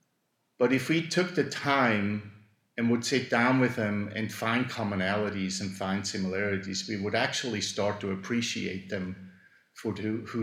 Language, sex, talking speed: English, male, 155 wpm